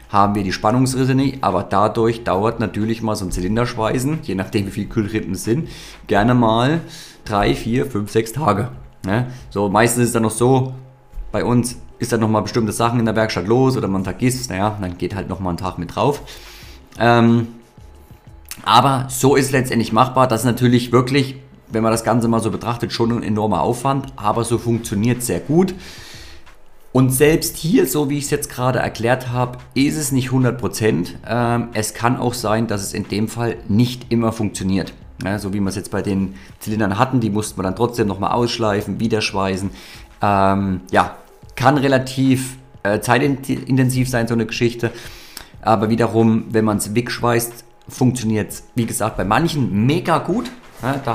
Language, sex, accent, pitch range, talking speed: German, male, German, 105-125 Hz, 180 wpm